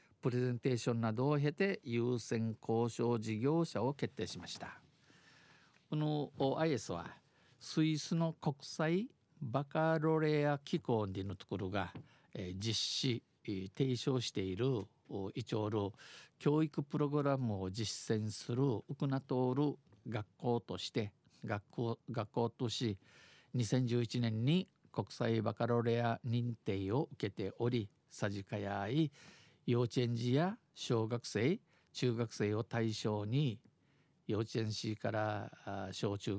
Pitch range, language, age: 110-145 Hz, Japanese, 50-69